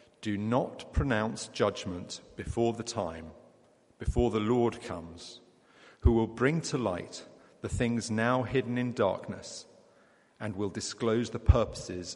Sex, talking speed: male, 135 wpm